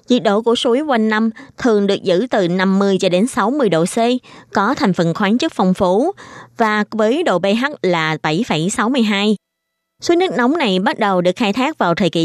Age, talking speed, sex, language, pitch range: 20-39, 200 wpm, female, Vietnamese, 185-240 Hz